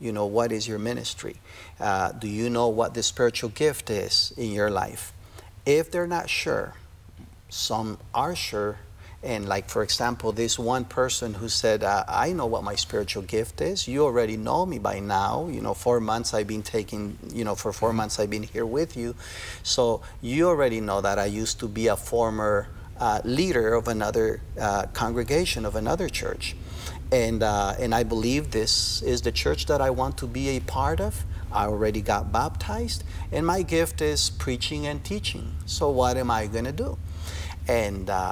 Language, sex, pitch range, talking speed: English, male, 90-115 Hz, 190 wpm